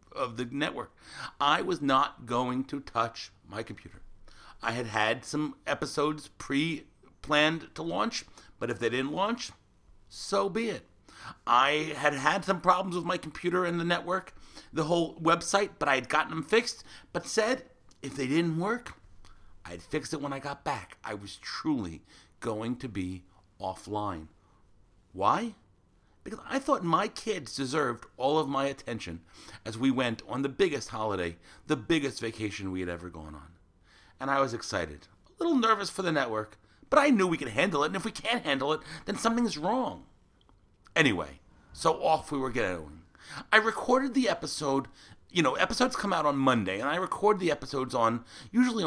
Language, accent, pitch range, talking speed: English, American, 100-170 Hz, 175 wpm